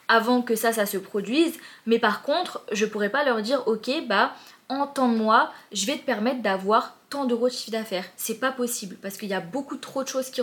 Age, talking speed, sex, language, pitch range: 20-39, 240 wpm, female, French, 210-250 Hz